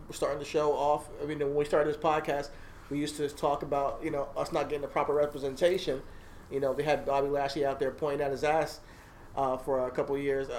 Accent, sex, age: American, male, 30-49